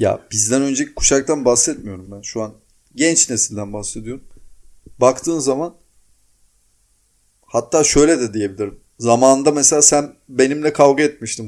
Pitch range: 110-150 Hz